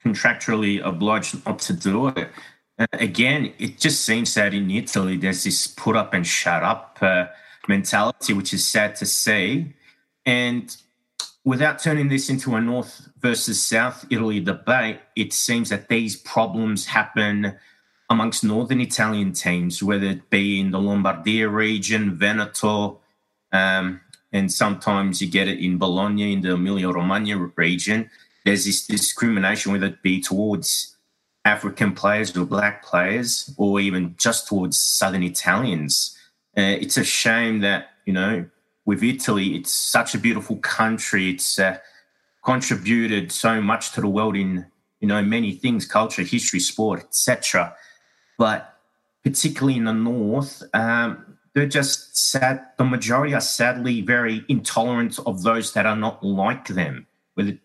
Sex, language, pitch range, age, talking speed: male, English, 95-115 Hz, 30-49, 150 wpm